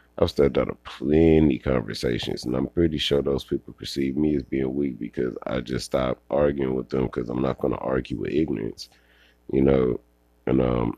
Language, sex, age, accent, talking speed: English, male, 30-49, American, 195 wpm